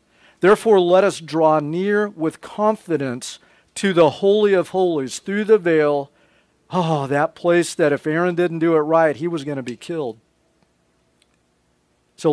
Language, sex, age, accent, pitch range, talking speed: English, male, 50-69, American, 145-185 Hz, 155 wpm